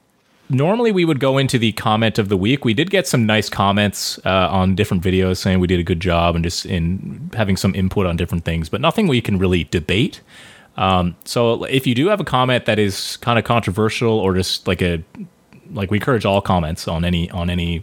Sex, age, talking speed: male, 30-49, 225 wpm